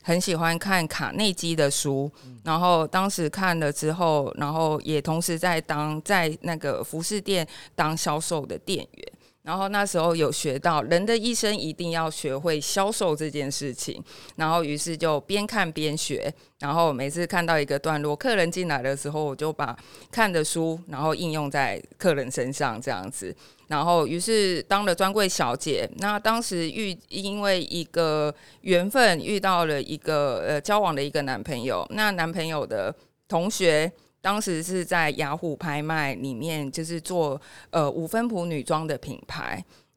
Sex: female